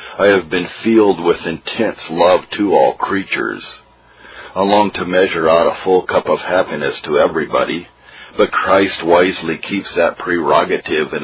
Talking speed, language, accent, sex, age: 155 wpm, English, American, male, 50-69